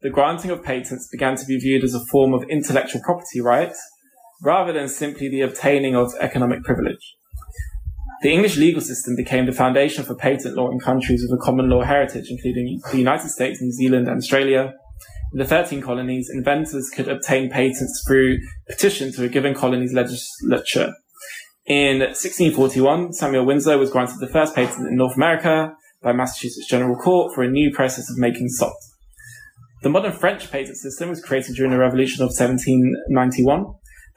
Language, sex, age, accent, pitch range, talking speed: English, male, 20-39, British, 125-145 Hz, 170 wpm